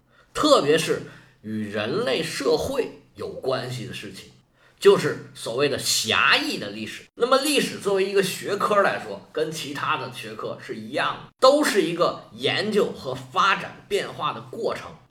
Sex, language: male, Chinese